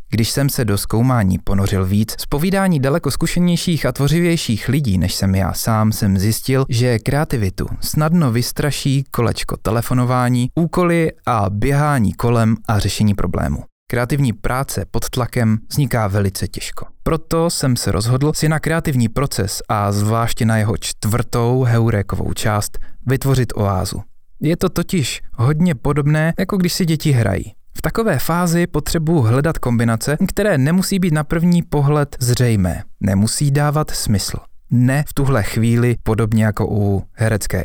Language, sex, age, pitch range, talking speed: Czech, male, 20-39, 105-145 Hz, 145 wpm